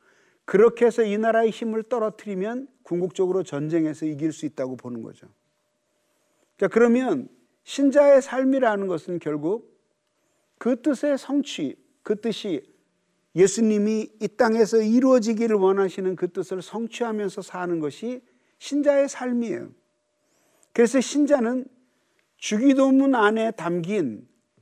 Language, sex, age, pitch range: Korean, male, 40-59, 200-270 Hz